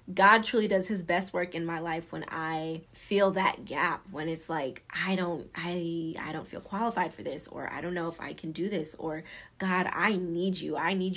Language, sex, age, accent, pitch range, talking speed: English, female, 20-39, American, 165-200 Hz, 225 wpm